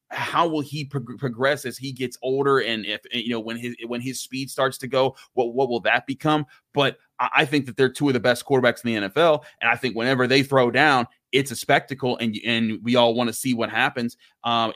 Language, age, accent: English, 30-49, American